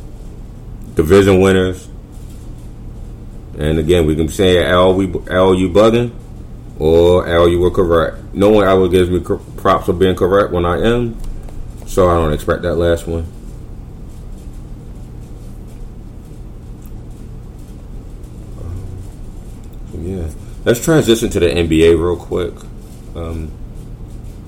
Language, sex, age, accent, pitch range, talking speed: English, male, 30-49, American, 85-110 Hz, 115 wpm